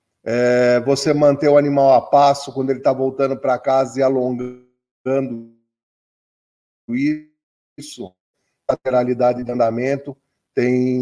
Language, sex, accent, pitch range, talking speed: Portuguese, male, Brazilian, 130-170 Hz, 110 wpm